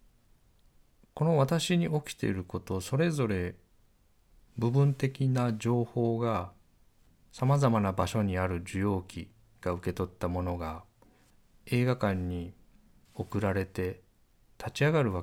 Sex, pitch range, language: male, 95-130 Hz, Japanese